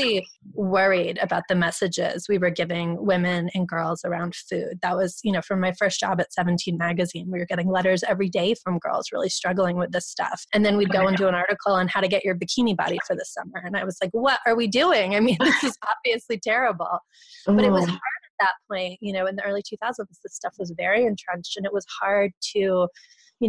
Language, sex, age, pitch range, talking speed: English, female, 20-39, 180-215 Hz, 235 wpm